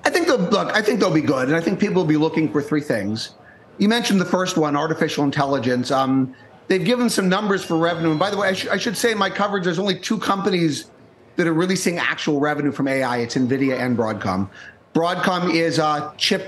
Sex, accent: male, American